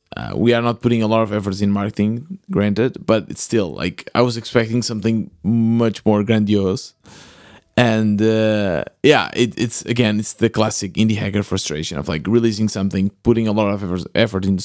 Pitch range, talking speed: 105-125 Hz, 180 wpm